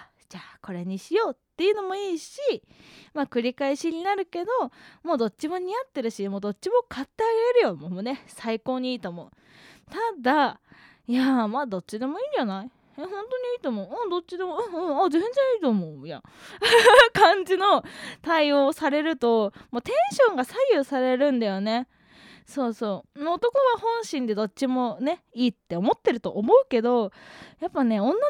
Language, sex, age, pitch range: Japanese, female, 20-39, 210-345 Hz